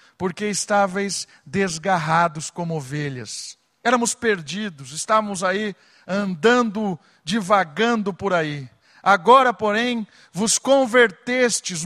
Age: 50-69